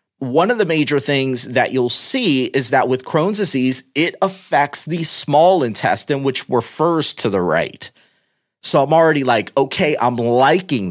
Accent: American